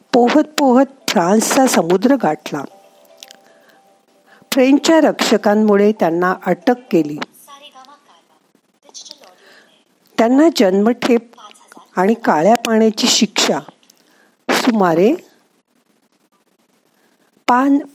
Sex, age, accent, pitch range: female, 50-69, native, 190-265 Hz